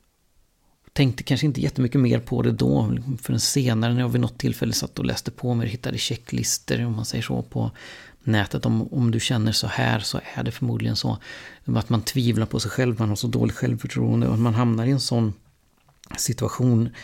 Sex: male